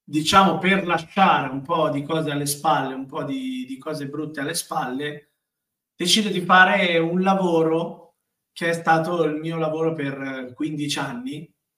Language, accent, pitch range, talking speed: Italian, native, 135-165 Hz, 160 wpm